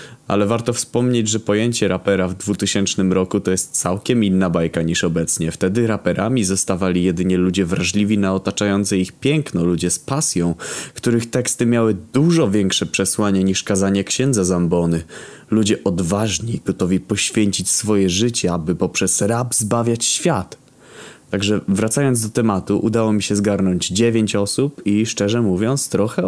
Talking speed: 145 wpm